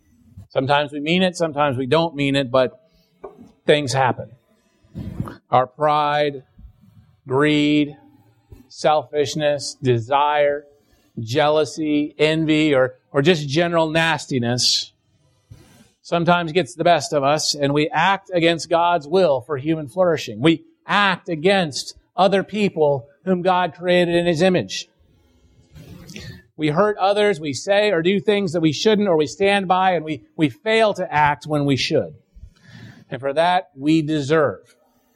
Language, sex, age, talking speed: English, male, 40-59, 135 wpm